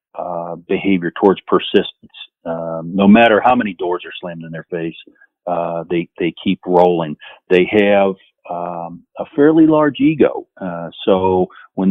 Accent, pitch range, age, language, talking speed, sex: American, 85-105 Hz, 50-69, English, 150 wpm, male